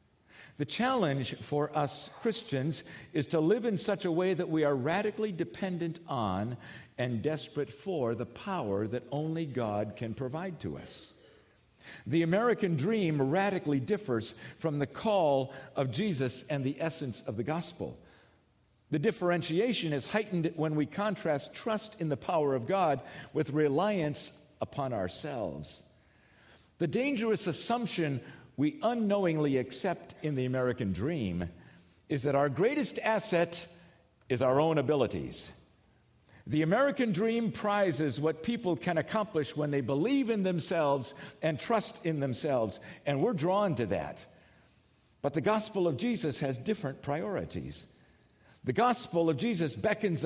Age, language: 50-69, English